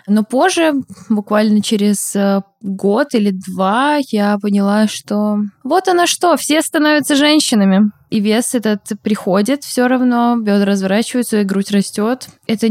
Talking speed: 130 wpm